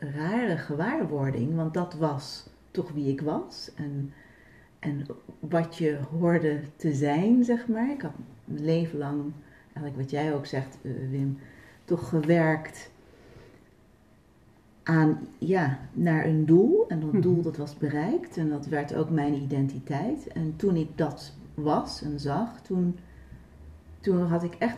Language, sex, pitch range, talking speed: Dutch, female, 140-170 Hz, 145 wpm